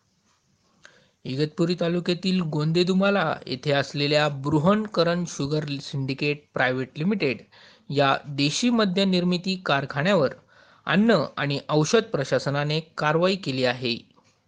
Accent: native